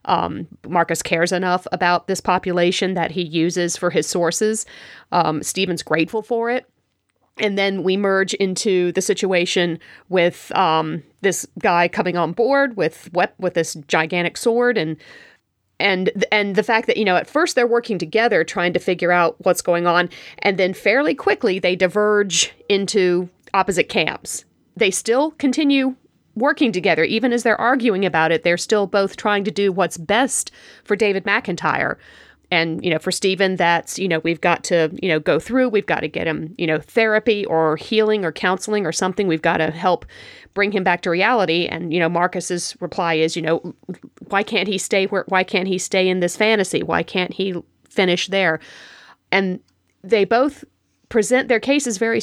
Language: English